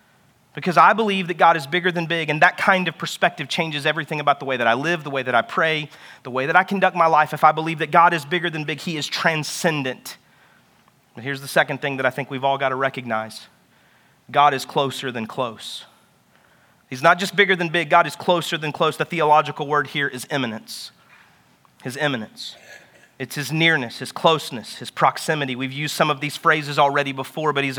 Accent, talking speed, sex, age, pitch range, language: American, 215 wpm, male, 30-49, 140-160 Hz, English